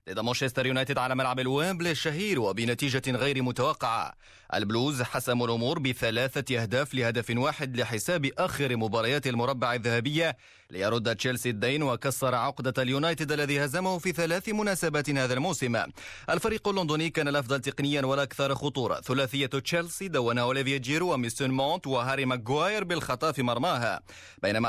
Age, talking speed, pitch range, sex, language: 30-49, 135 wpm, 120-145 Hz, male, Arabic